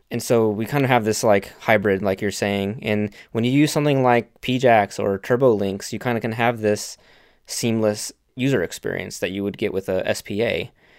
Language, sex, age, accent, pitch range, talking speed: English, male, 20-39, American, 100-120 Hz, 200 wpm